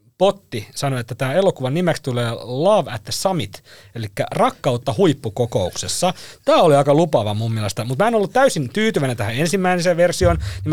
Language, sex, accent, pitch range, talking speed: Finnish, male, native, 115-175 Hz, 170 wpm